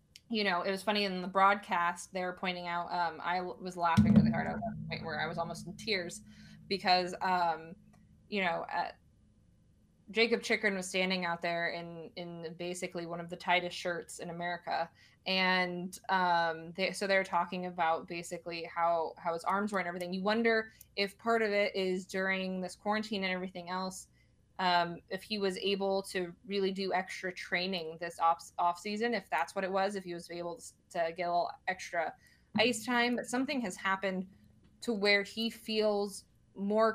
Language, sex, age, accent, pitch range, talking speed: English, female, 20-39, American, 170-200 Hz, 185 wpm